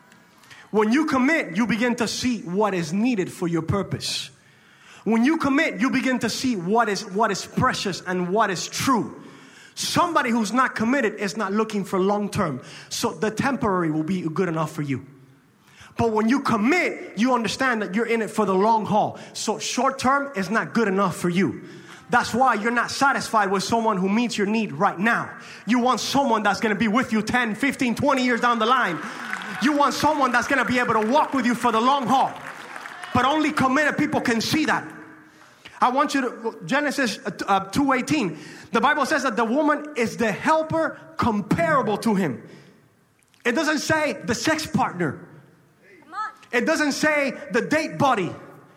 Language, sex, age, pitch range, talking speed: English, male, 20-39, 205-270 Hz, 185 wpm